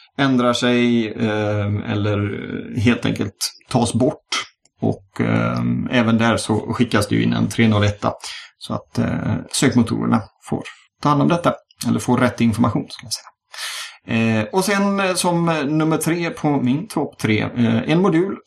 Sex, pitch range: male, 115-140 Hz